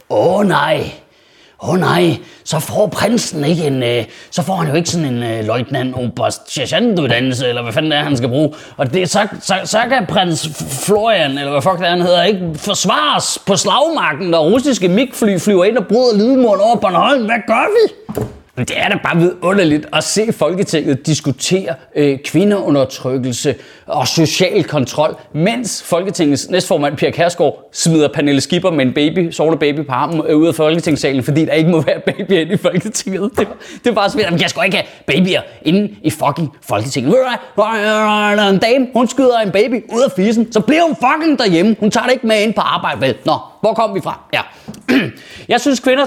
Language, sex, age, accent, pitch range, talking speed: Danish, male, 30-49, native, 150-220 Hz, 195 wpm